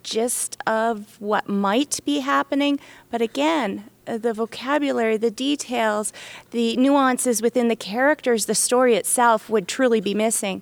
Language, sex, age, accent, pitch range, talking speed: English, female, 30-49, American, 195-240 Hz, 135 wpm